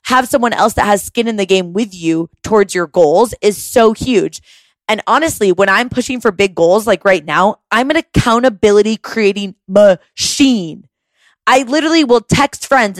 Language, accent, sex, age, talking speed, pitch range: English, American, female, 20-39, 175 wpm, 185-240 Hz